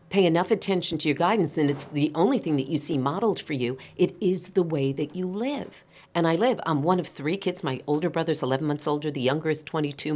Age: 50-69